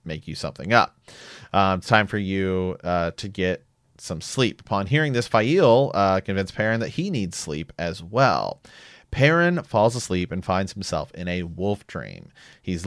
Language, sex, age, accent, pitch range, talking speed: English, male, 30-49, American, 90-110 Hz, 175 wpm